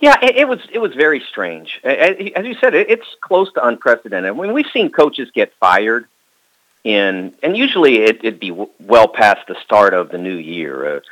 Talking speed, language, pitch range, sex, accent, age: 180 wpm, English, 120-175 Hz, male, American, 50-69